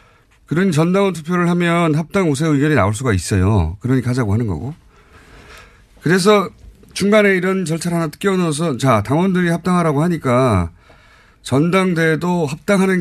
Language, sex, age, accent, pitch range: Korean, male, 30-49, native, 110-160 Hz